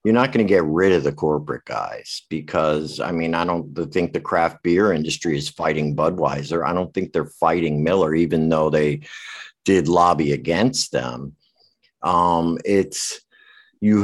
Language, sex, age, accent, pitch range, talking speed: English, male, 50-69, American, 75-100 Hz, 165 wpm